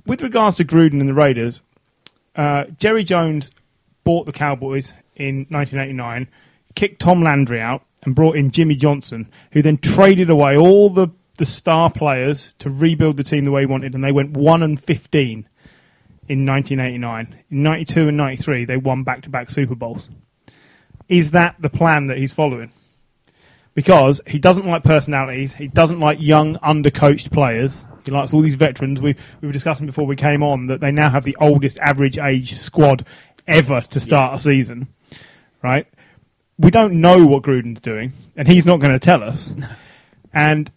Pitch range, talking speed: 135-160 Hz, 185 wpm